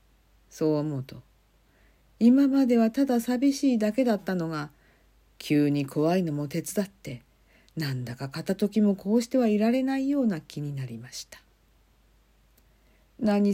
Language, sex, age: Japanese, female, 50-69